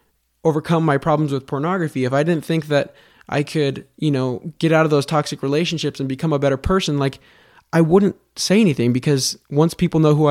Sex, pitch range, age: male, 130-160 Hz, 20-39